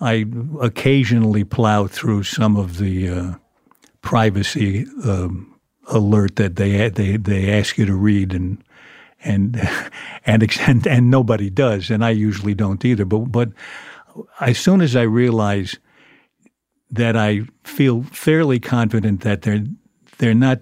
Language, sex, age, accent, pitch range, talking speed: English, male, 60-79, American, 100-120 Hz, 135 wpm